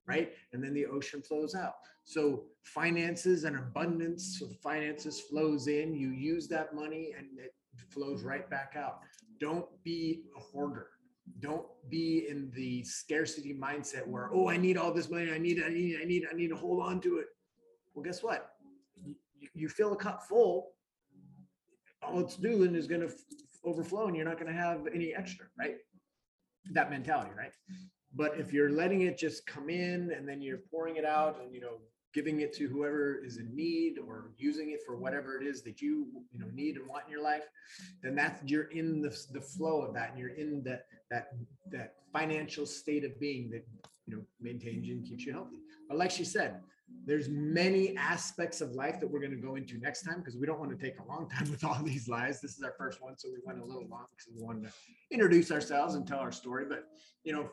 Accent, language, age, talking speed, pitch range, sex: American, English, 30-49, 215 wpm, 140-170 Hz, male